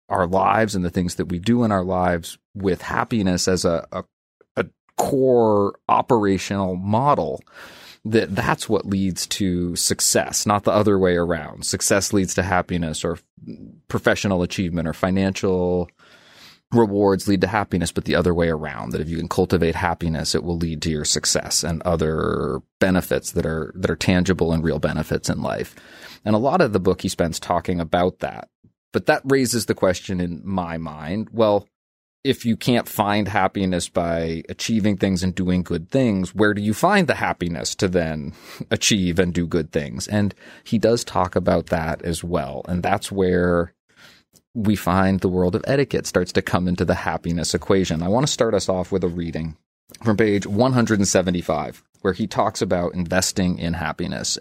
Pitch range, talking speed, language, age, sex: 85-100 Hz, 180 wpm, English, 30-49, male